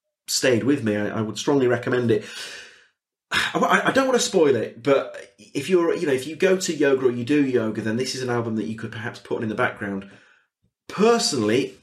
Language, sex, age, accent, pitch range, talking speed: English, male, 30-49, British, 110-175 Hz, 225 wpm